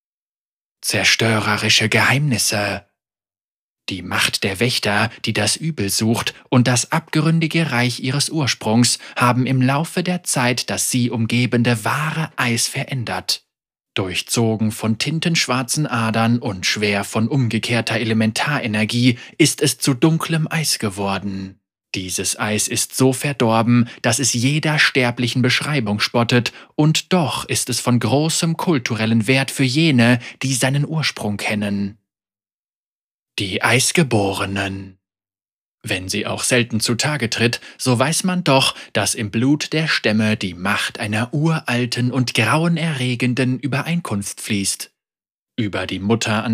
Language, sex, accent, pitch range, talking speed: German, male, German, 110-140 Hz, 125 wpm